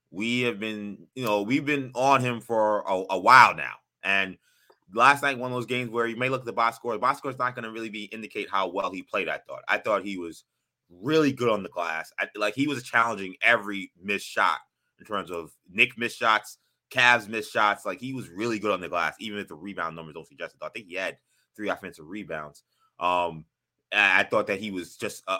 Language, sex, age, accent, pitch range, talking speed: English, male, 20-39, American, 95-125 Hz, 240 wpm